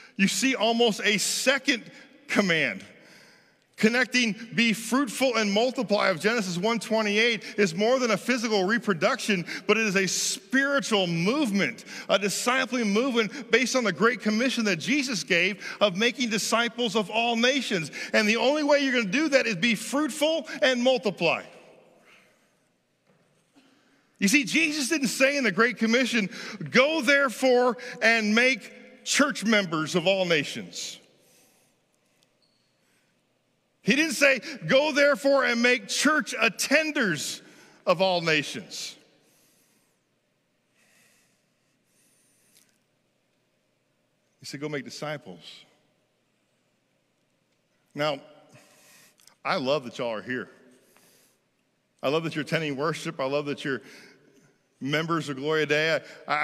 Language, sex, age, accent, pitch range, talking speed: English, male, 40-59, American, 180-255 Hz, 120 wpm